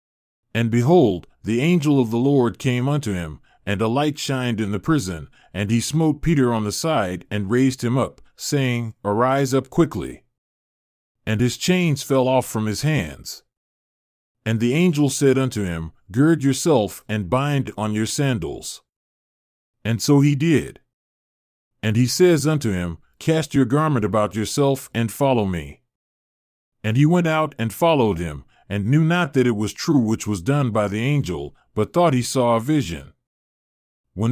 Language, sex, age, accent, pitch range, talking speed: English, male, 40-59, American, 110-145 Hz, 170 wpm